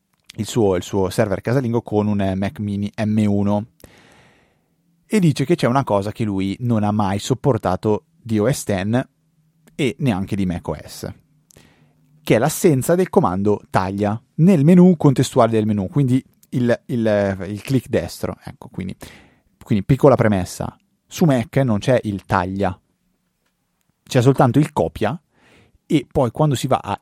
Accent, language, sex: native, Italian, male